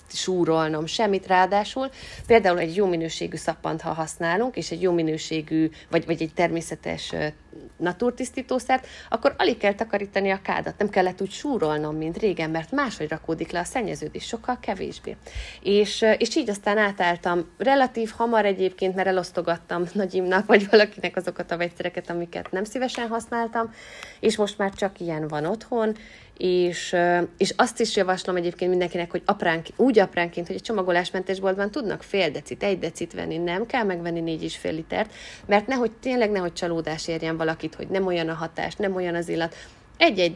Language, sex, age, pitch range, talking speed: Hungarian, female, 30-49, 165-205 Hz, 165 wpm